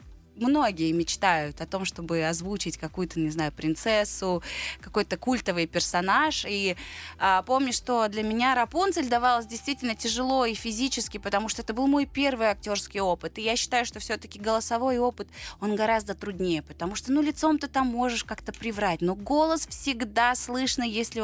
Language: Russian